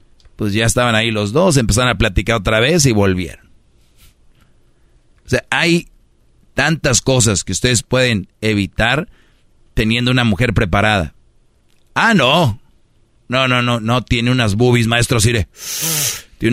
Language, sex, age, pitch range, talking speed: Spanish, male, 40-59, 110-125 Hz, 140 wpm